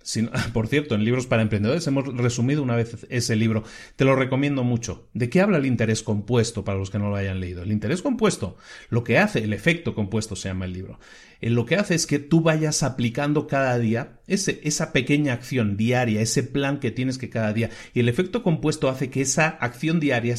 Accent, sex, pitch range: Mexican, male, 110-145 Hz